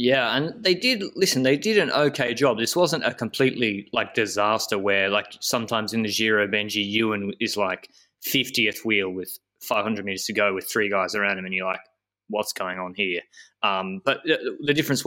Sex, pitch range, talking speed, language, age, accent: male, 105-140 Hz, 200 wpm, English, 20-39, Australian